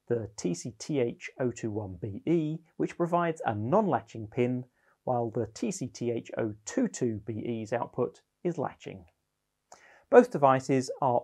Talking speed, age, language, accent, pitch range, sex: 85 wpm, 40-59, English, British, 110-150 Hz, male